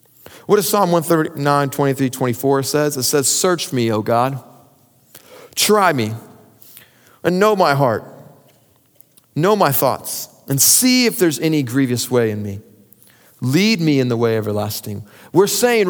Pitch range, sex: 125-175 Hz, male